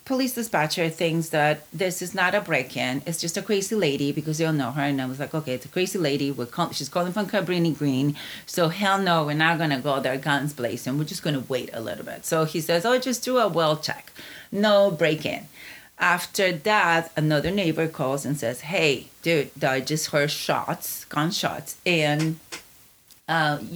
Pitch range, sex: 135-175 Hz, female